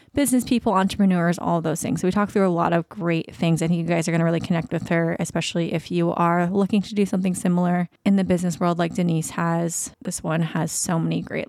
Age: 20-39